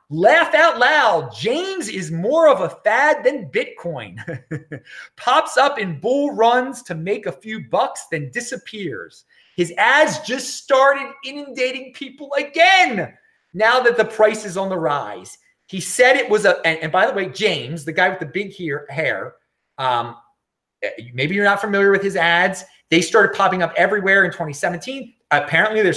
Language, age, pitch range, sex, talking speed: English, 30-49, 160-240 Hz, male, 170 wpm